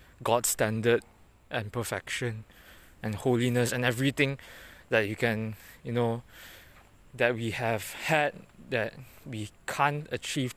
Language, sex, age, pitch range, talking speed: English, male, 20-39, 100-125 Hz, 120 wpm